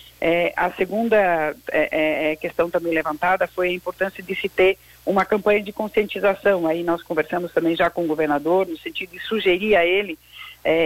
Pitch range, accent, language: 170-200 Hz, Brazilian, Portuguese